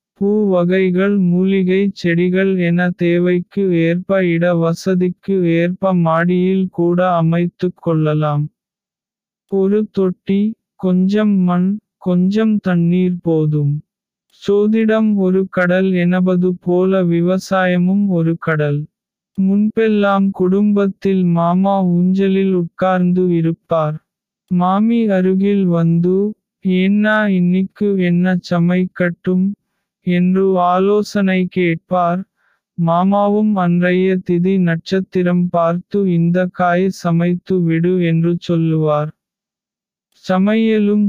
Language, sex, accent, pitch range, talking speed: Tamil, male, native, 175-195 Hz, 80 wpm